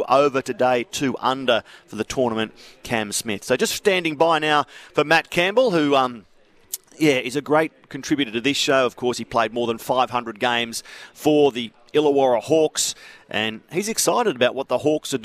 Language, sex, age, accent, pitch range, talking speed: English, male, 40-59, Australian, 125-155 Hz, 185 wpm